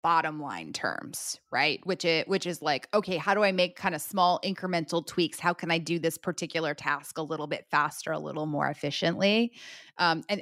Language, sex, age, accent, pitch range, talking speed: English, female, 20-39, American, 160-195 Hz, 205 wpm